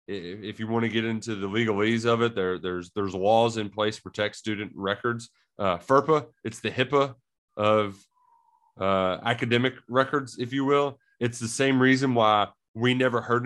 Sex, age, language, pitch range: male, 30-49, English, 105-135 Hz